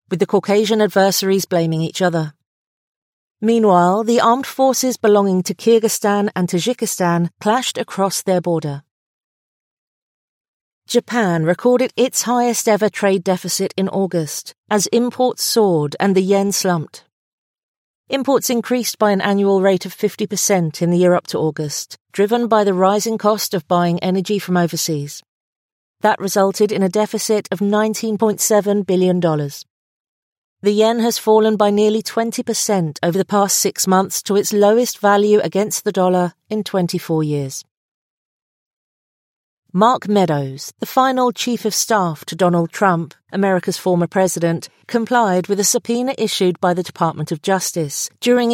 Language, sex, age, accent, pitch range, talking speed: English, female, 40-59, British, 180-220 Hz, 140 wpm